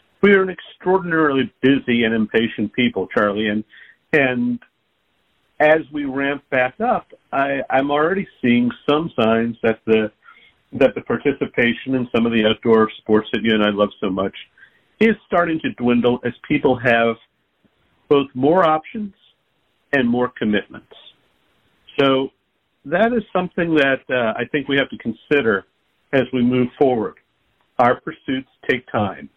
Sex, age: male, 50-69